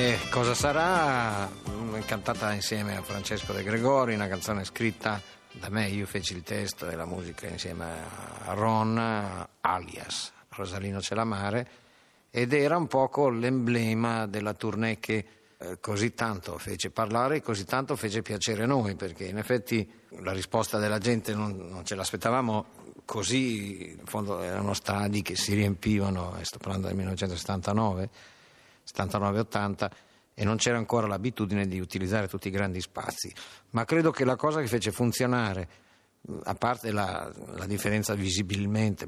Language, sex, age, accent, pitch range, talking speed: Italian, male, 50-69, native, 100-115 Hz, 150 wpm